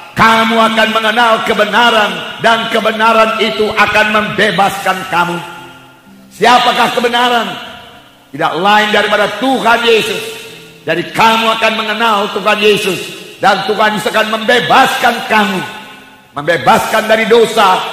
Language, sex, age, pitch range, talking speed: English, male, 50-69, 210-245 Hz, 105 wpm